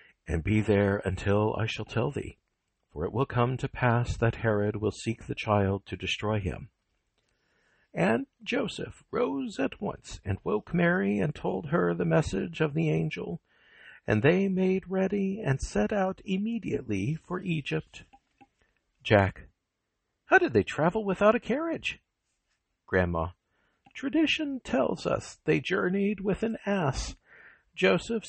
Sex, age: male, 60-79